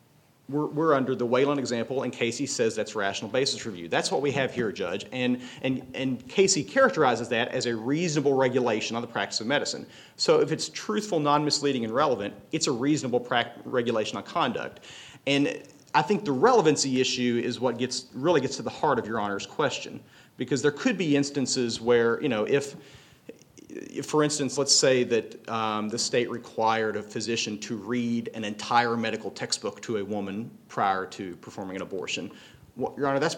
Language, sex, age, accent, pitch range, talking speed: English, male, 40-59, American, 110-140 Hz, 185 wpm